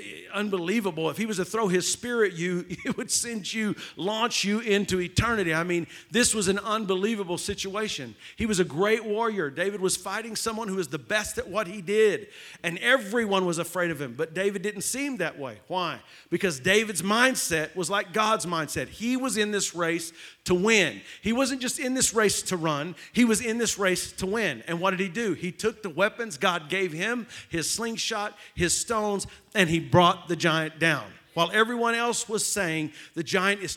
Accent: American